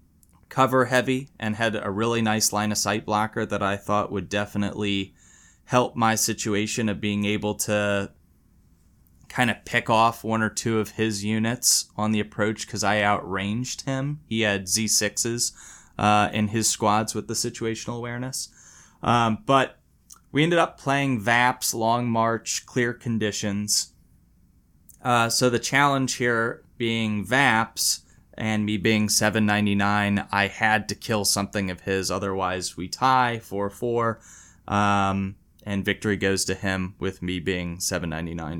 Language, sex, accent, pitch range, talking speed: English, male, American, 95-115 Hz, 145 wpm